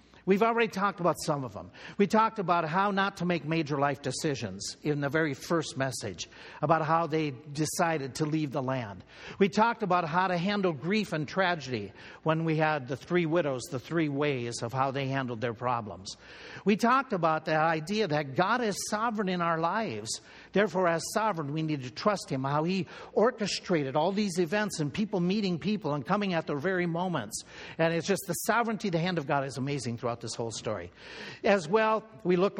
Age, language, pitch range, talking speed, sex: 50-69, English, 145-195 Hz, 200 wpm, male